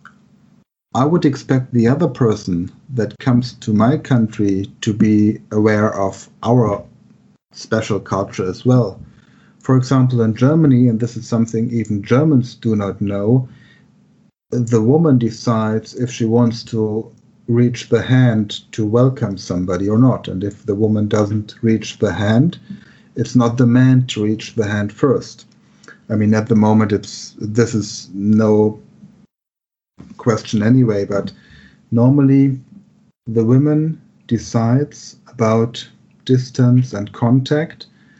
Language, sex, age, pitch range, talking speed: English, male, 50-69, 110-130 Hz, 135 wpm